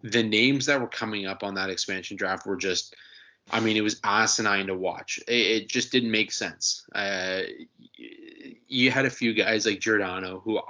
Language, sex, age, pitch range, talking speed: English, male, 20-39, 100-125 Hz, 185 wpm